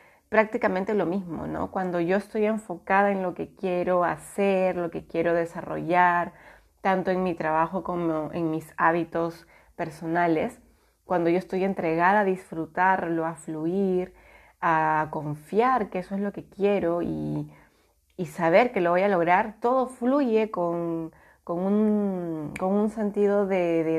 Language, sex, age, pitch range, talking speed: Spanish, female, 30-49, 165-200 Hz, 150 wpm